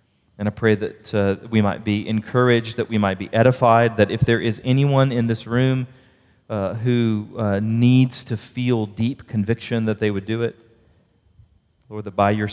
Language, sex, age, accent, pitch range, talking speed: English, male, 40-59, American, 100-140 Hz, 185 wpm